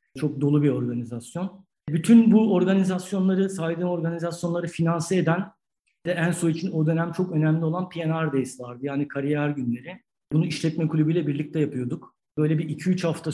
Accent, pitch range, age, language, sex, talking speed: native, 145-165 Hz, 50-69, Turkish, male, 155 wpm